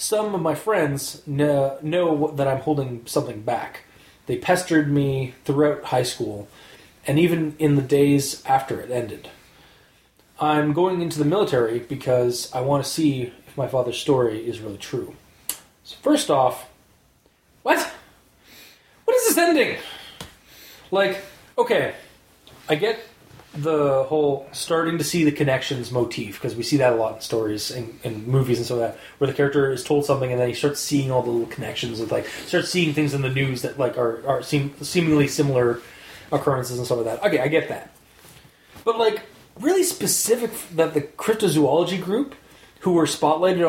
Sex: male